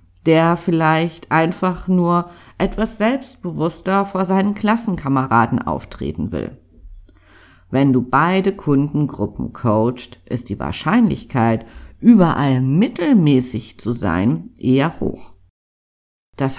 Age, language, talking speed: 50-69, German, 95 wpm